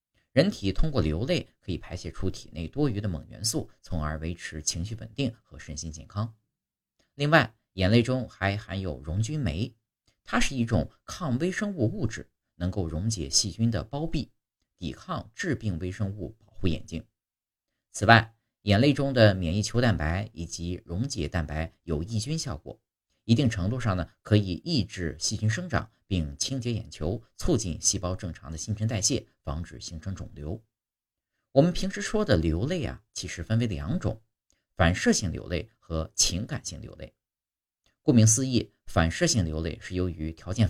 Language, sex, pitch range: Chinese, male, 80-115 Hz